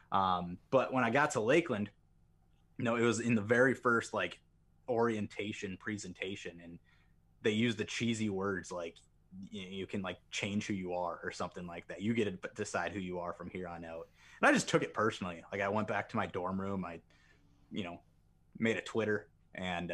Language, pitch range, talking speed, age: English, 85-100 Hz, 205 wpm, 20-39